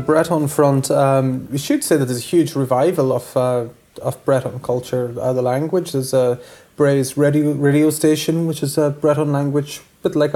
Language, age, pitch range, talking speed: English, 20-39, 130-150 Hz, 190 wpm